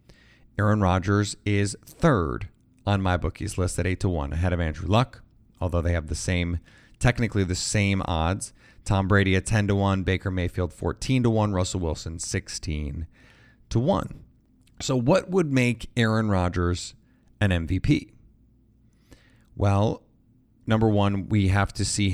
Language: English